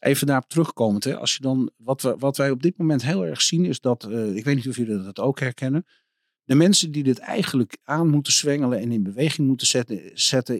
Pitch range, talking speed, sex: 110-140 Hz, 240 wpm, male